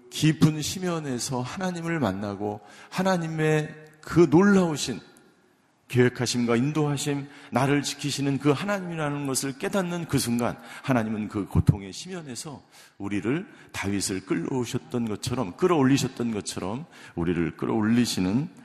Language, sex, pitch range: Korean, male, 105-145 Hz